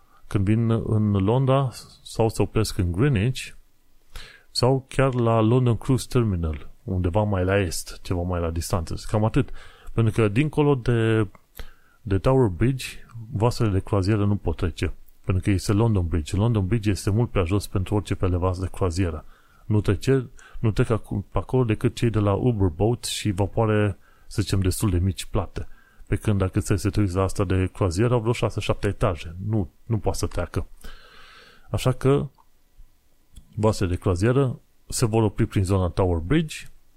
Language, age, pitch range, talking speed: Romanian, 30-49, 95-120 Hz, 170 wpm